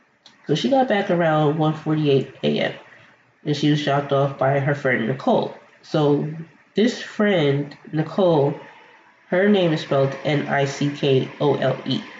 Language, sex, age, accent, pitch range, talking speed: English, female, 20-39, American, 140-175 Hz, 125 wpm